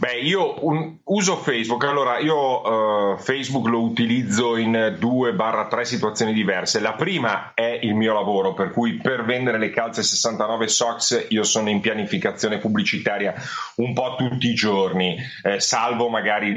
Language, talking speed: Italian, 155 wpm